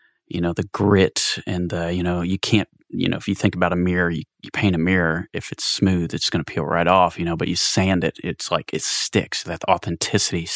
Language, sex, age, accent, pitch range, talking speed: English, male, 30-49, American, 85-100 Hz, 250 wpm